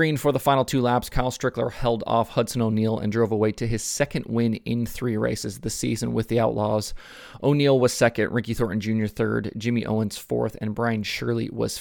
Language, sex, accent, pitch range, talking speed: English, male, American, 110-125 Hz, 205 wpm